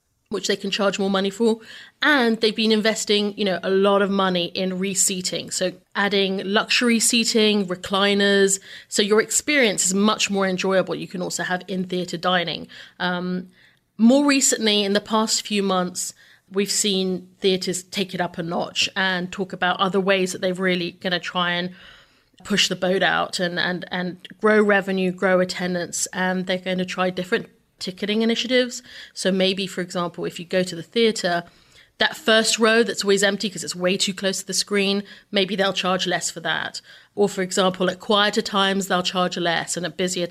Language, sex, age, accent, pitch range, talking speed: English, female, 30-49, British, 180-205 Hz, 190 wpm